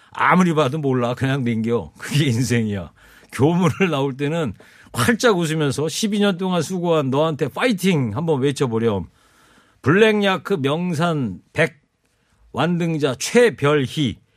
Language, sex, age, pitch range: Korean, male, 50-69, 125-180 Hz